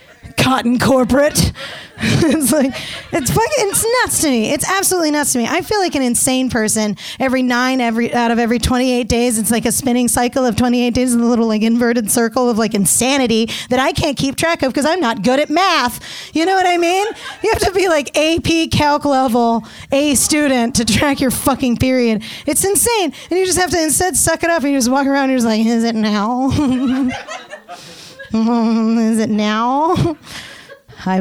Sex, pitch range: female, 235-300 Hz